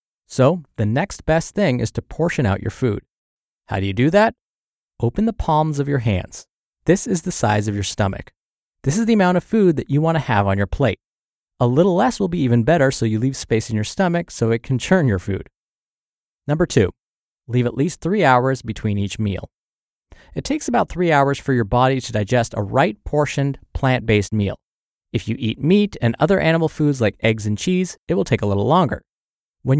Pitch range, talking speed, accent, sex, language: 110-165 Hz, 215 wpm, American, male, English